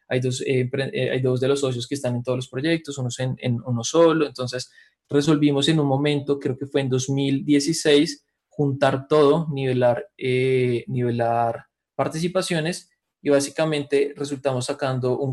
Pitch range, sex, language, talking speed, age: 125-145 Hz, male, English, 165 wpm, 20-39